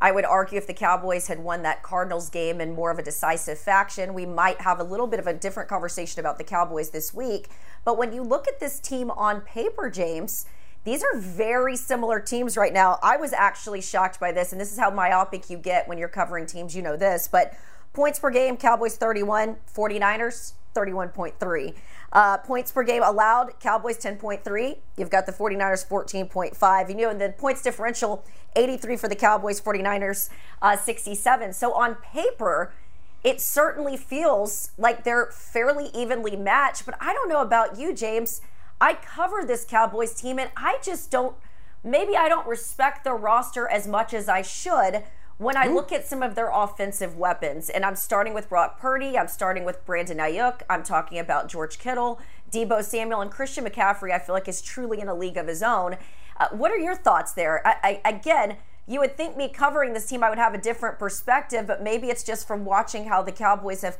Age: 30-49